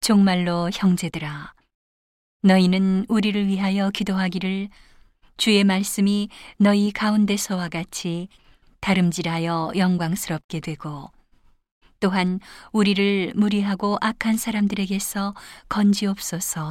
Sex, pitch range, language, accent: female, 175-200 Hz, Korean, native